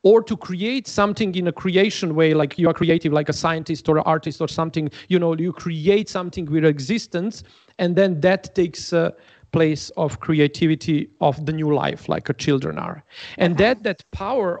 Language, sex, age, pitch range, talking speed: English, male, 40-59, 155-205 Hz, 195 wpm